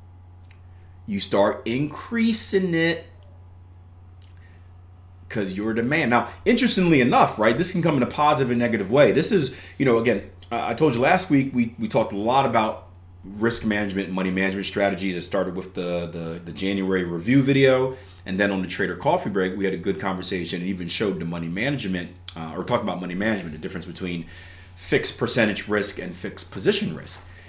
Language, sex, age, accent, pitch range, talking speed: English, male, 30-49, American, 90-115 Hz, 190 wpm